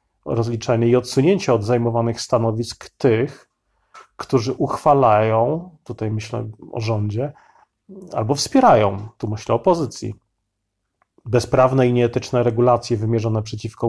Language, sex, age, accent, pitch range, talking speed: Polish, male, 30-49, native, 110-130 Hz, 110 wpm